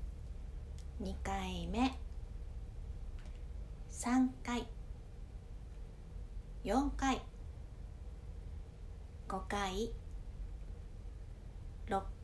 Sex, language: female, Japanese